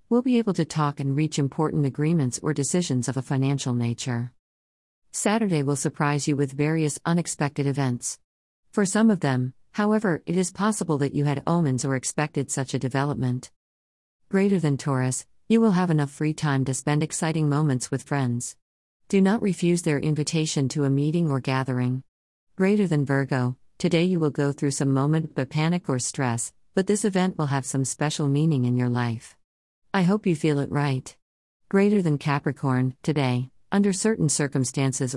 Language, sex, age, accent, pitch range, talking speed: English, female, 50-69, American, 130-160 Hz, 175 wpm